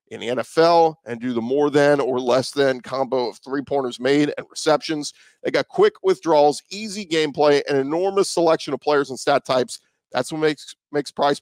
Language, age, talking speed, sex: English, 40-59, 190 wpm, male